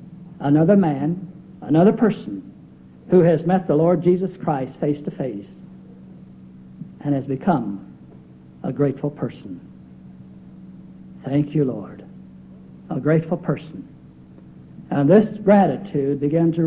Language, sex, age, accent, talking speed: English, male, 60-79, American, 110 wpm